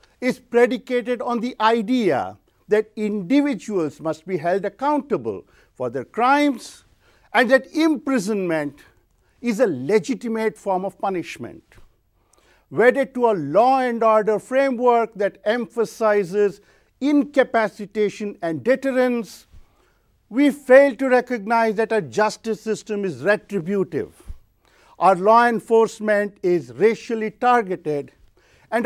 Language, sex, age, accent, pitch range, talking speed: English, male, 50-69, Indian, 205-250 Hz, 110 wpm